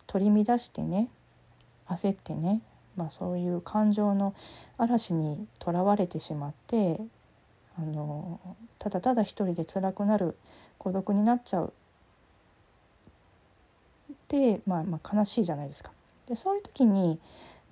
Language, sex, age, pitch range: Japanese, female, 40-59, 170-225 Hz